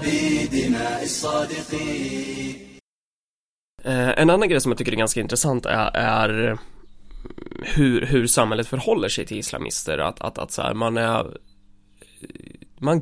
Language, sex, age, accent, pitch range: Swedish, male, 20-39, native, 105-140 Hz